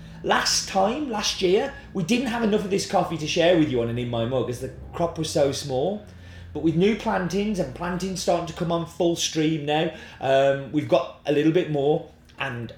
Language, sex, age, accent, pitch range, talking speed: English, male, 30-49, British, 140-200 Hz, 220 wpm